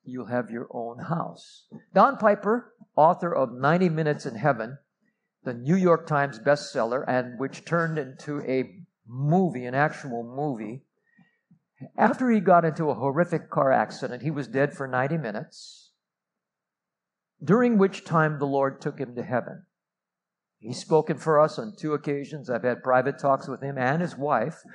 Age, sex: 50-69, male